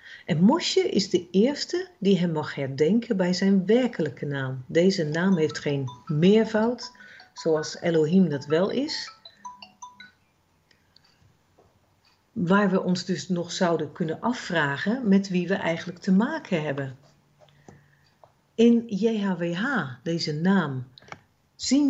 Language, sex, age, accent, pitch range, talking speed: Dutch, female, 50-69, Dutch, 155-225 Hz, 120 wpm